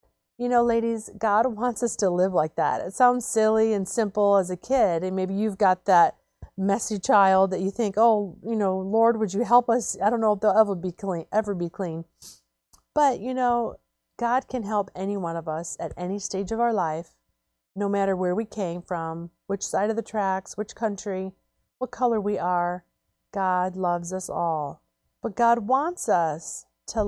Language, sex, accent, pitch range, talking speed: English, female, American, 180-230 Hz, 195 wpm